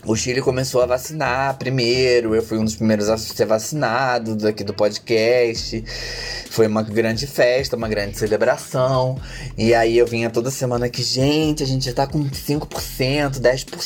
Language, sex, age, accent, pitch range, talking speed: Portuguese, male, 20-39, Brazilian, 110-140 Hz, 165 wpm